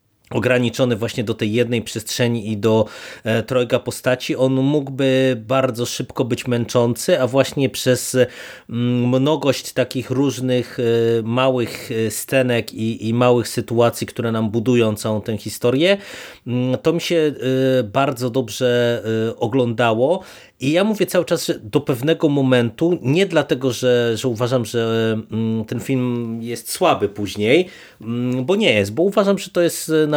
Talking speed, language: 135 wpm, English